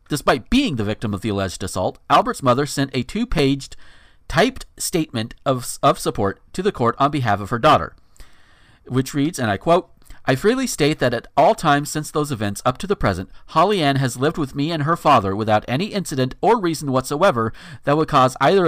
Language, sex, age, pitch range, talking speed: English, male, 40-59, 115-160 Hz, 205 wpm